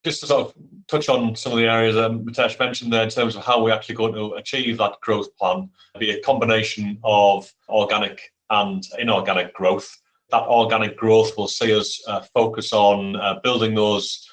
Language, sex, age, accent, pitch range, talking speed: English, male, 30-49, British, 100-115 Hz, 195 wpm